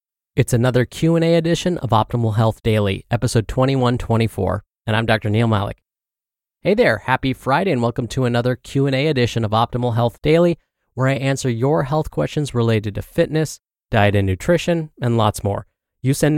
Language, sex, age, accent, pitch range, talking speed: English, male, 20-39, American, 110-150 Hz, 195 wpm